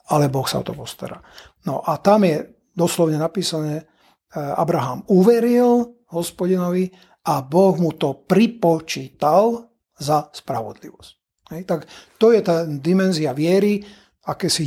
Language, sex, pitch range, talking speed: Slovak, male, 150-180 Hz, 125 wpm